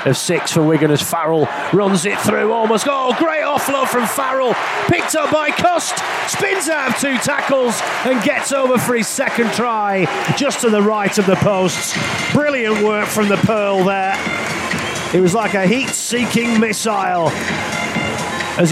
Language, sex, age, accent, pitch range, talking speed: English, male, 30-49, British, 155-220 Hz, 165 wpm